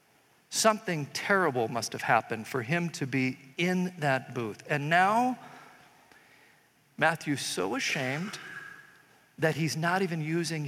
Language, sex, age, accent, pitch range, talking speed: English, male, 50-69, American, 125-165 Hz, 125 wpm